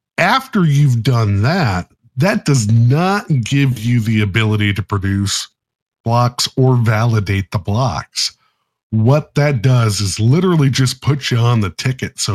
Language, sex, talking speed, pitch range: English, male, 145 wpm, 110-145 Hz